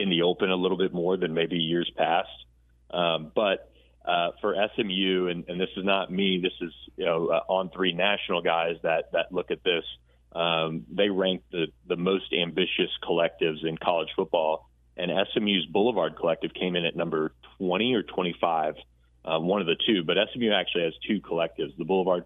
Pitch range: 80-90 Hz